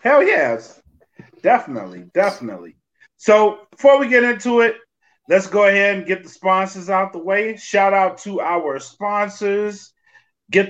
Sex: male